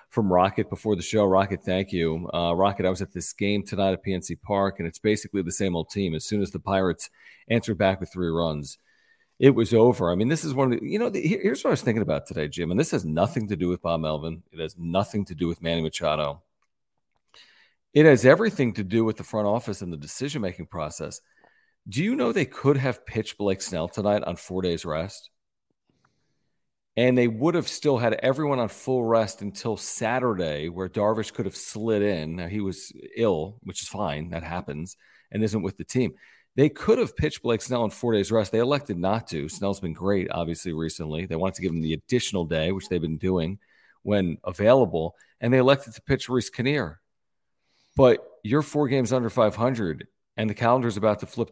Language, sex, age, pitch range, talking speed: English, male, 40-59, 85-115 Hz, 215 wpm